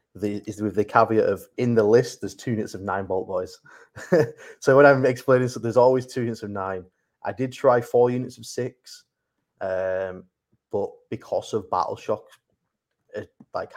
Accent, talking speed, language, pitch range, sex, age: British, 185 wpm, English, 95-125 Hz, male, 20-39